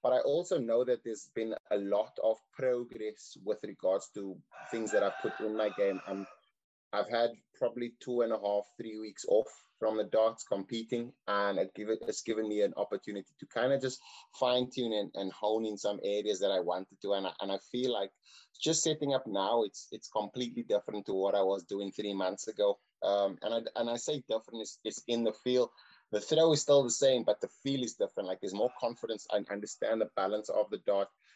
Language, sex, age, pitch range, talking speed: English, male, 30-49, 100-130 Hz, 210 wpm